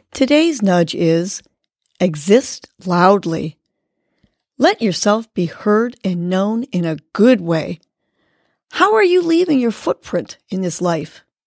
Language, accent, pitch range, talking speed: English, American, 175-235 Hz, 125 wpm